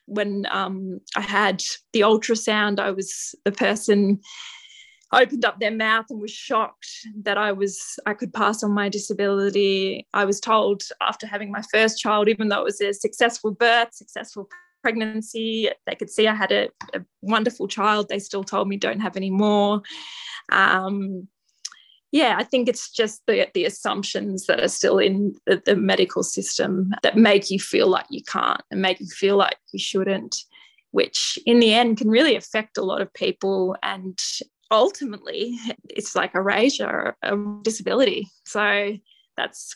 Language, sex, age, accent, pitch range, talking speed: English, female, 20-39, Australian, 195-225 Hz, 170 wpm